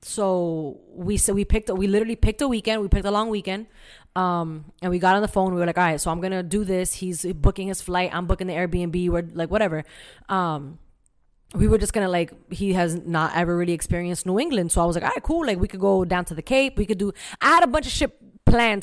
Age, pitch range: 20-39, 170-200 Hz